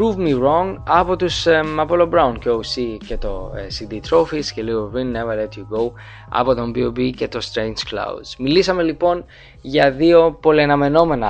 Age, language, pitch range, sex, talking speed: 20-39, English, 120-150 Hz, male, 175 wpm